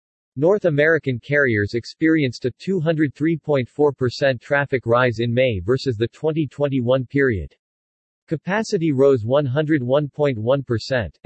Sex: male